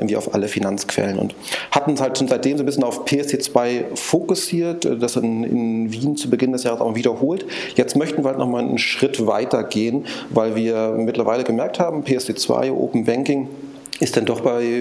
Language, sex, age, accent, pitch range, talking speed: German, male, 30-49, German, 115-130 Hz, 185 wpm